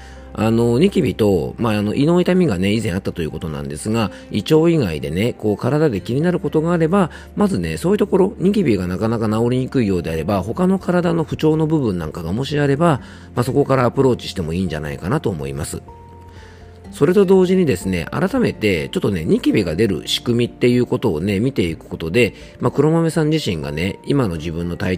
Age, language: 40-59, Japanese